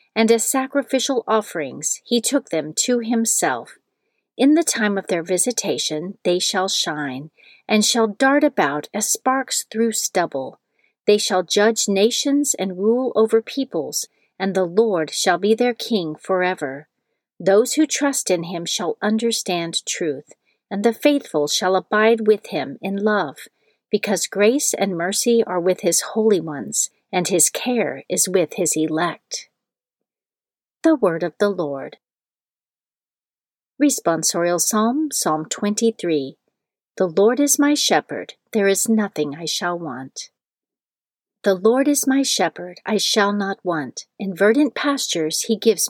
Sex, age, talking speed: female, 40-59, 145 wpm